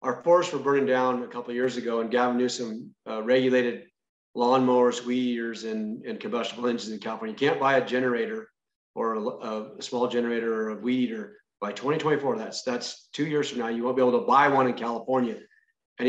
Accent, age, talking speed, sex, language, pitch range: American, 40-59, 205 wpm, male, English, 125-140 Hz